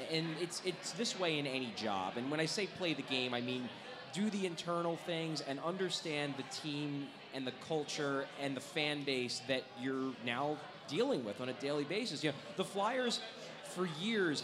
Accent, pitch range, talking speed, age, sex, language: American, 130-170 Hz, 195 wpm, 20-39, male, English